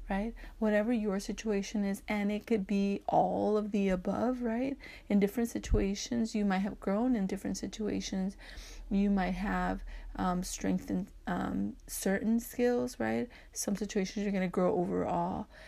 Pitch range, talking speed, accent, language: 200-245 Hz, 155 wpm, American, English